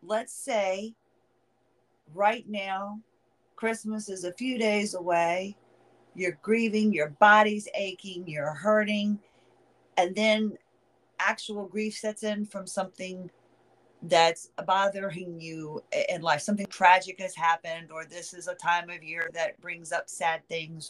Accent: American